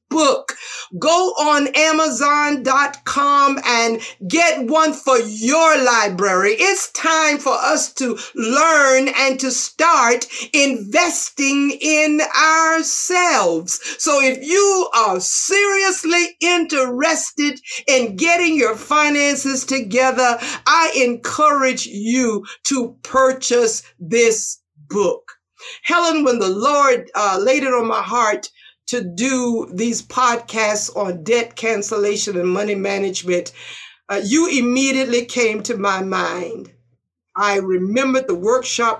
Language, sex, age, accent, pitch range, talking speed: English, female, 50-69, American, 205-295 Hz, 110 wpm